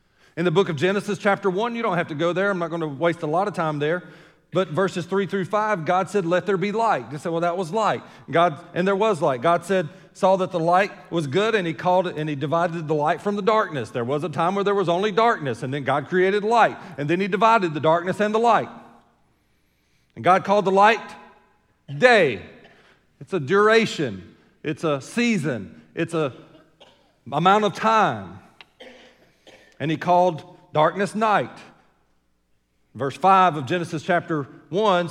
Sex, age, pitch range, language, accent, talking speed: male, 40-59, 150-200 Hz, English, American, 200 wpm